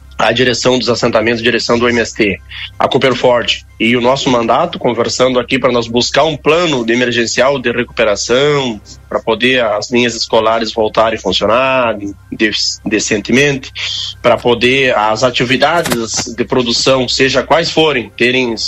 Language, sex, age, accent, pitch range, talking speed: Portuguese, male, 30-49, Brazilian, 115-145 Hz, 145 wpm